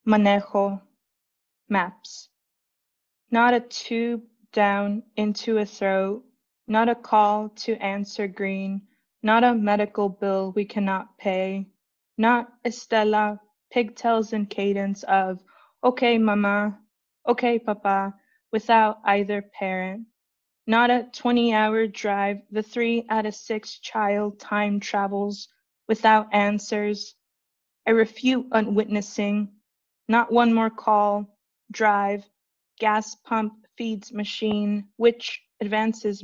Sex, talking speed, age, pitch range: female, 105 wpm, 20-39, 200-230 Hz